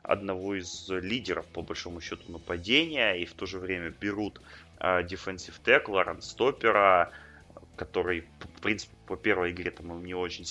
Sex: male